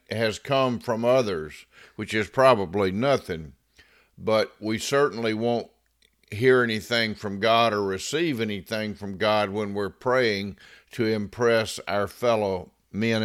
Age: 50-69